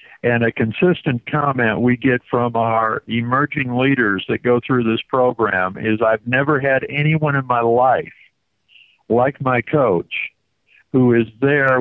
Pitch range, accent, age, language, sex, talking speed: 120-140 Hz, American, 60-79, English, male, 145 wpm